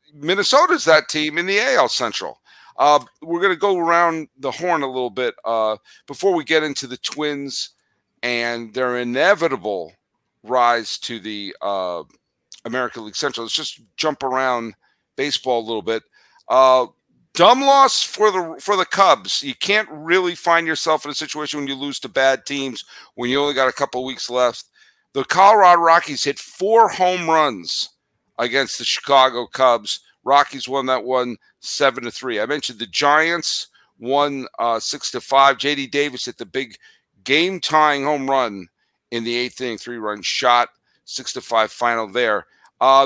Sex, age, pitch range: male, 50-69, 120-165 Hz